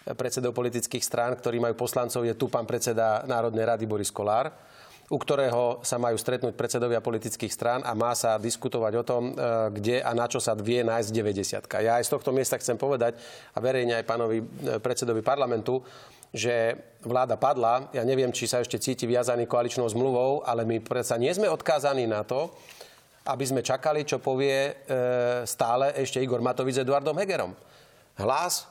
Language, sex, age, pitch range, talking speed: Slovak, male, 30-49, 120-140 Hz, 170 wpm